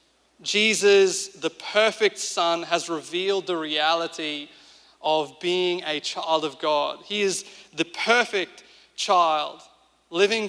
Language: English